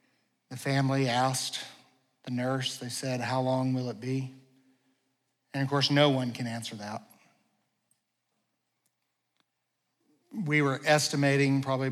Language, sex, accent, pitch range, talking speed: English, male, American, 125-135 Hz, 120 wpm